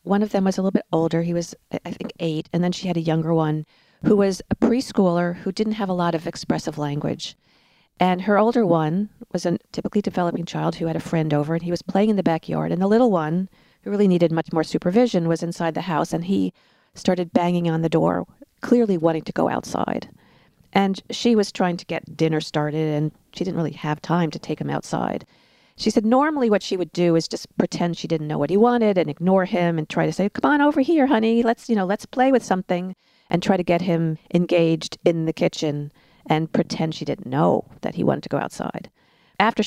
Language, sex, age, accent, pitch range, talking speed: English, female, 40-59, American, 165-210 Hz, 230 wpm